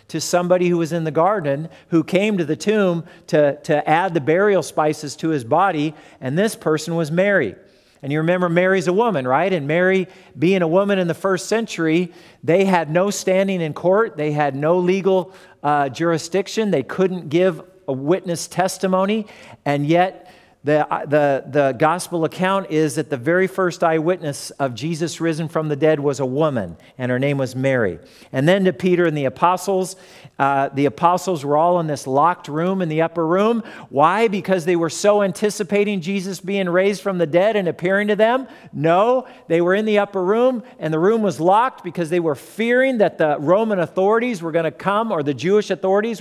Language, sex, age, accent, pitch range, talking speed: English, male, 50-69, American, 155-190 Hz, 195 wpm